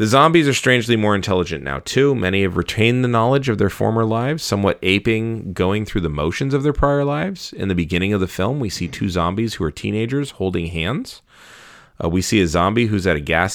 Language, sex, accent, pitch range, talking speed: English, male, American, 85-110 Hz, 225 wpm